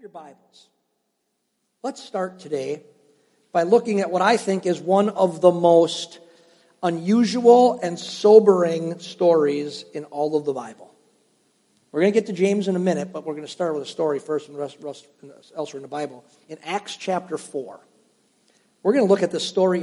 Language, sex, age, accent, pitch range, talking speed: English, male, 50-69, American, 155-195 Hz, 190 wpm